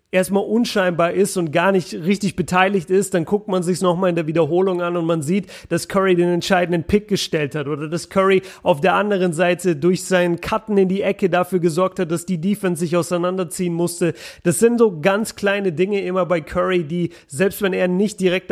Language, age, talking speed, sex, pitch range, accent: German, 30-49, 215 wpm, male, 170-190 Hz, German